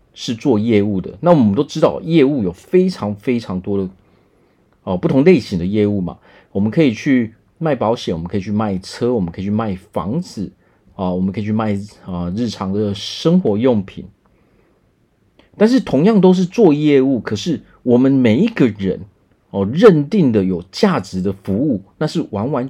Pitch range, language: 100-155 Hz, Chinese